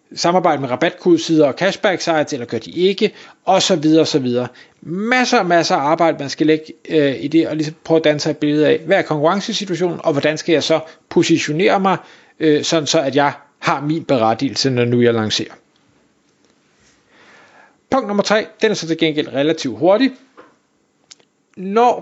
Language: Danish